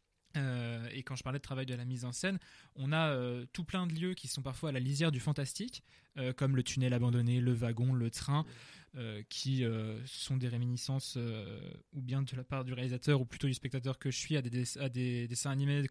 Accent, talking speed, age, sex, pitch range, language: French, 240 wpm, 20-39, male, 125-160 Hz, French